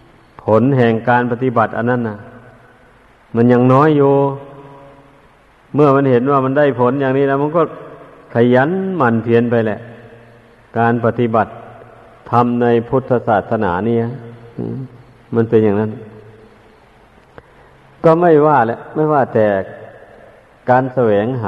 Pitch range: 115-140 Hz